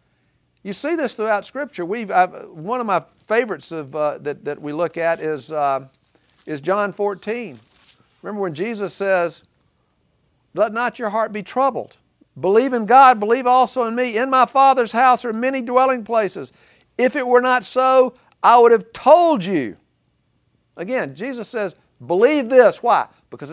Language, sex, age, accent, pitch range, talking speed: English, male, 50-69, American, 155-245 Hz, 165 wpm